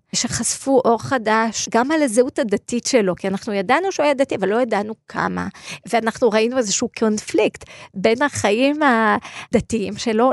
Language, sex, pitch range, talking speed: Hebrew, female, 215-270 Hz, 150 wpm